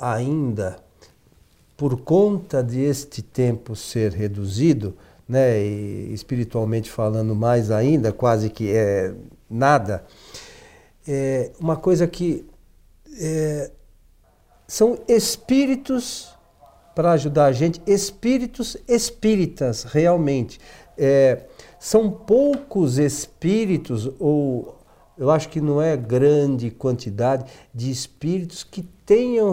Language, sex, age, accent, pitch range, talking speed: Portuguese, male, 50-69, Brazilian, 115-175 Hz, 100 wpm